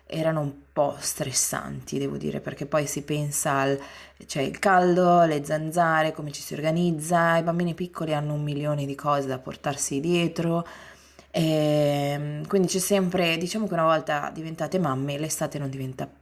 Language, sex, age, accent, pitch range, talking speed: Italian, female, 20-39, native, 145-175 Hz, 165 wpm